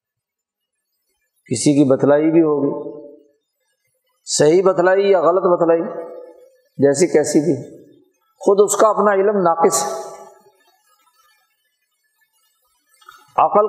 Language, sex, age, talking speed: Urdu, male, 50-69, 90 wpm